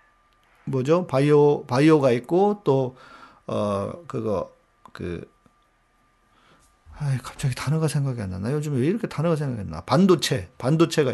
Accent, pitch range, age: native, 130-185 Hz, 40-59